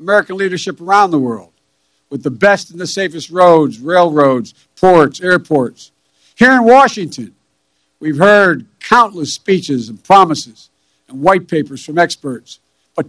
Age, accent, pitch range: 60-79, American, 170-245 Hz